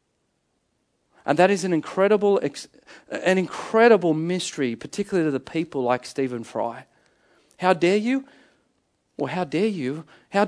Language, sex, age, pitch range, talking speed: English, male, 40-59, 155-205 Hz, 130 wpm